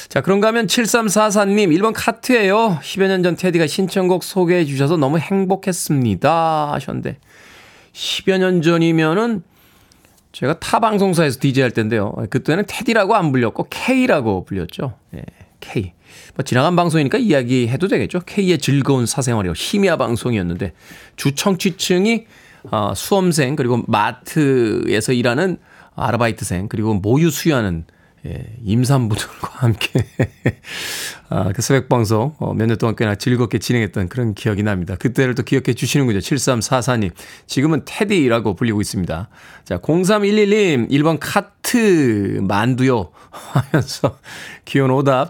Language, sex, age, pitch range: Korean, male, 20-39, 115-180 Hz